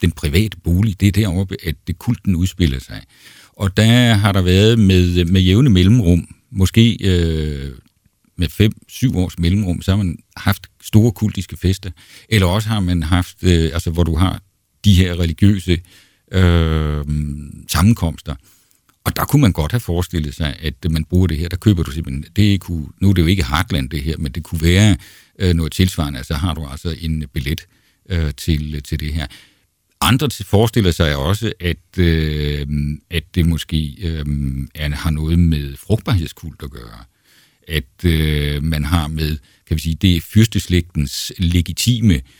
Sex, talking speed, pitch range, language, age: male, 170 wpm, 80-100 Hz, Danish, 60-79